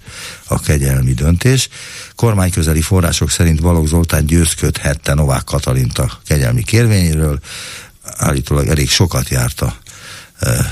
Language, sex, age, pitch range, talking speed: Hungarian, male, 60-79, 80-110 Hz, 105 wpm